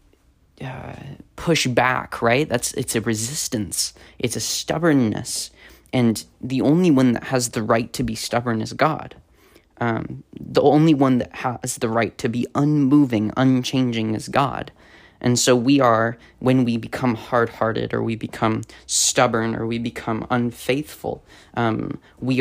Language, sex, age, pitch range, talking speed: English, male, 20-39, 110-130 Hz, 150 wpm